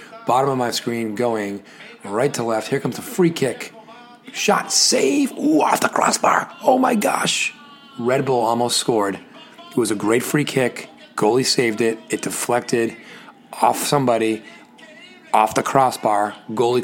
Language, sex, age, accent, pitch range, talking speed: English, male, 30-49, American, 115-145 Hz, 155 wpm